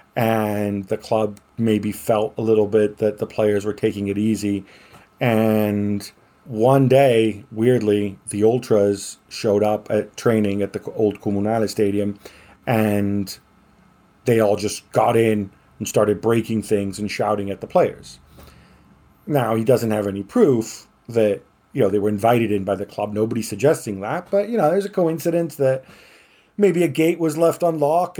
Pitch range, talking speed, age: 105-140 Hz, 165 wpm, 40-59